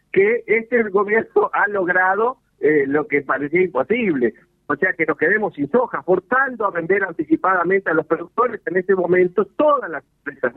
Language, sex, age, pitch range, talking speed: Spanish, male, 50-69, 165-235 Hz, 170 wpm